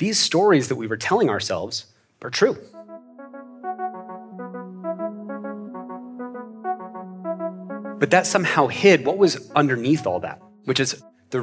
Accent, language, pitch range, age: American, Filipino, 110-150 Hz, 30-49